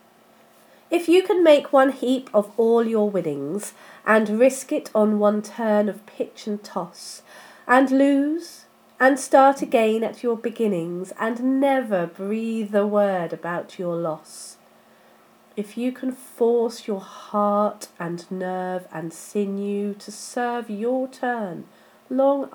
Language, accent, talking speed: English, British, 135 wpm